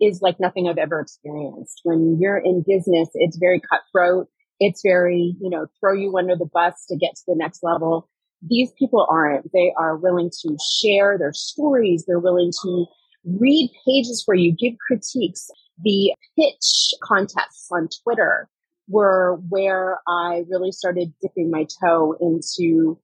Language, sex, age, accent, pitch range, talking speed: English, female, 30-49, American, 170-210 Hz, 160 wpm